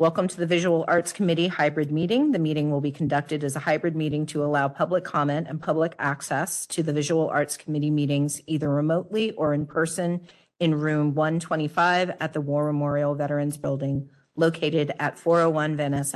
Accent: American